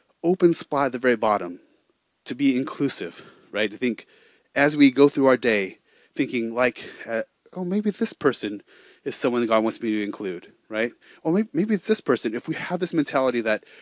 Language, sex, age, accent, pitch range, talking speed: English, male, 30-49, American, 120-155 Hz, 195 wpm